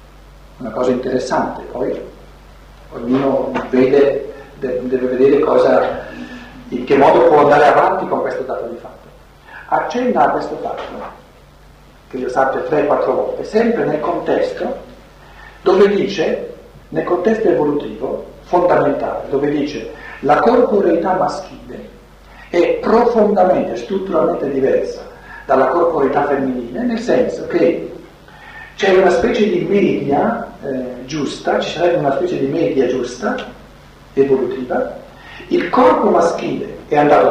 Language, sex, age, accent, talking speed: Italian, male, 50-69, native, 115 wpm